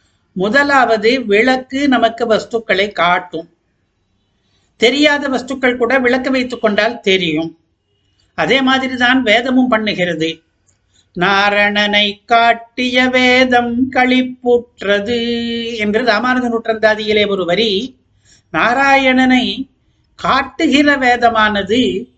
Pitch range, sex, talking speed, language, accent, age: 185-245 Hz, male, 75 wpm, Tamil, native, 60-79